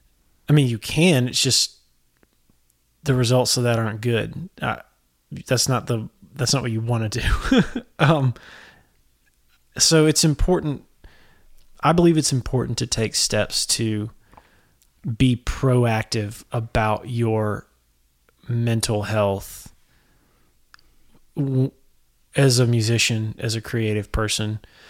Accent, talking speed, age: American, 115 wpm, 20-39